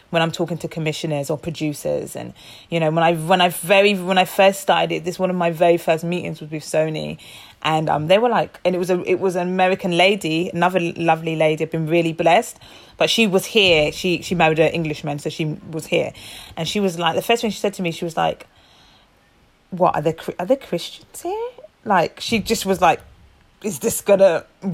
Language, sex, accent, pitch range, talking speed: English, female, British, 170-210 Hz, 220 wpm